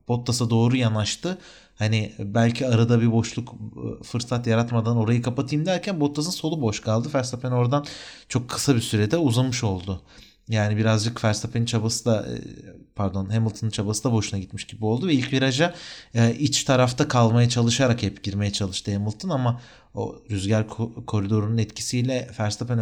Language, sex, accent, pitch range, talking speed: Turkish, male, native, 110-130 Hz, 150 wpm